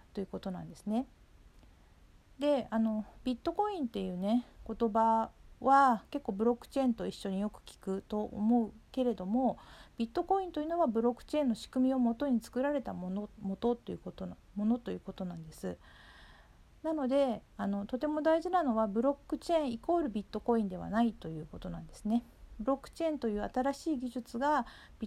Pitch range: 195-260 Hz